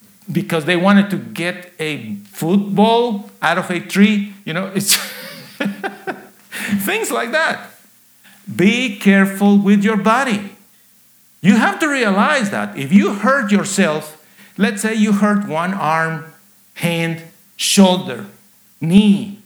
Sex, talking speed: male, 125 wpm